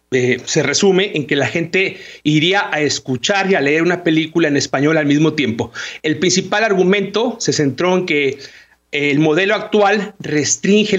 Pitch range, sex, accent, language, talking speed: 155-195 Hz, male, Mexican, Spanish, 170 wpm